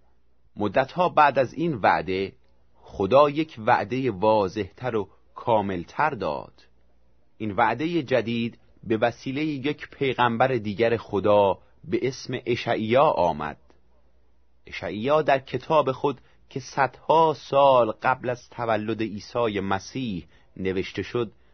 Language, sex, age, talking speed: Persian, male, 30-49, 110 wpm